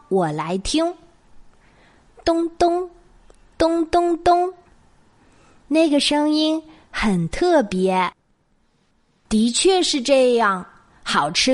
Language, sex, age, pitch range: Chinese, female, 20-39, 215-290 Hz